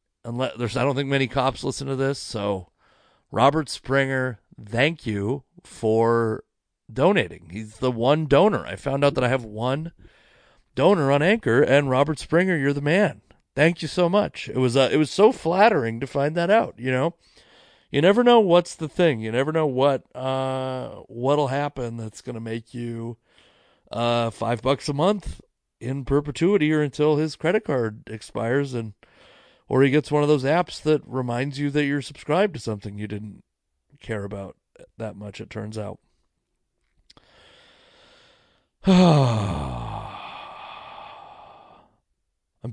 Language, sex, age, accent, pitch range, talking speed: English, male, 40-59, American, 115-150 Hz, 155 wpm